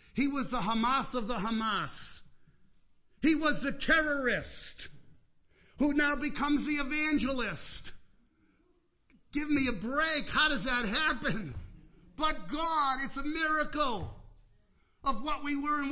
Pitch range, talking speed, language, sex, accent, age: 200-265 Hz, 130 wpm, English, male, American, 50-69